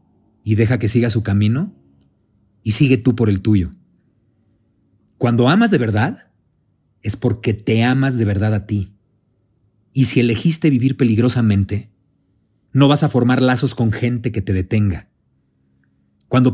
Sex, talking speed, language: male, 145 wpm, Spanish